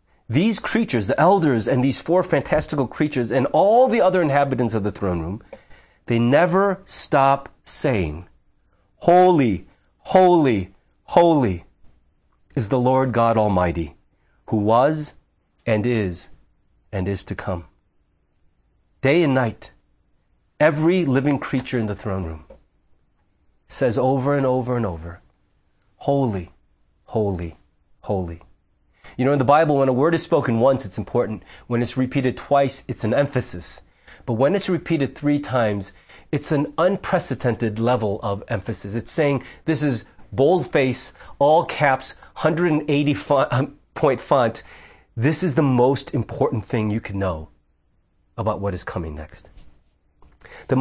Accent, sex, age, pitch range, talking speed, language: American, male, 40-59, 95-145 Hz, 135 wpm, English